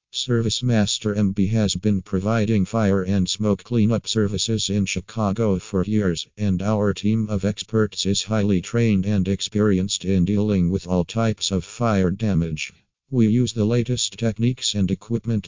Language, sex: English, male